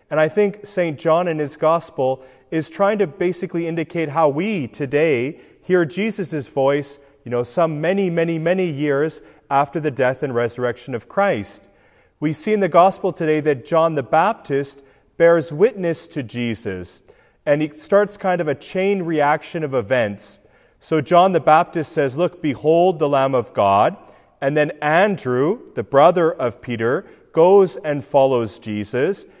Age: 30-49